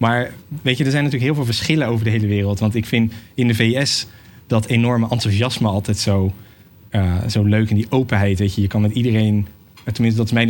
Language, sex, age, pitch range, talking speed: Dutch, male, 20-39, 105-120 Hz, 230 wpm